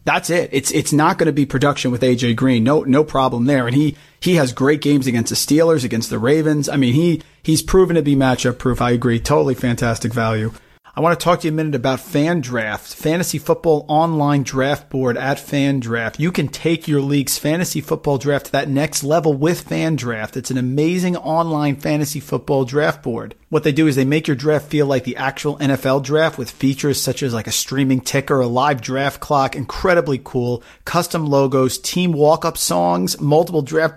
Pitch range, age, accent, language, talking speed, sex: 130-155 Hz, 40-59, American, English, 205 wpm, male